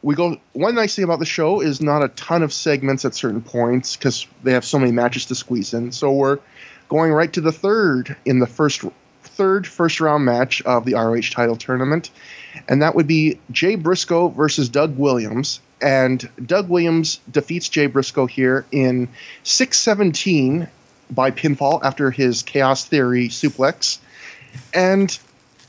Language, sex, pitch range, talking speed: English, male, 130-160 Hz, 170 wpm